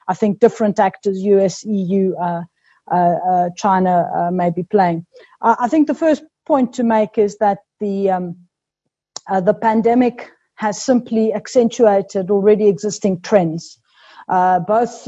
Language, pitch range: English, 180-215 Hz